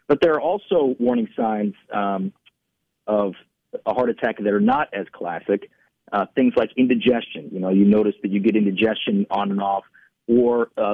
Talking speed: 180 wpm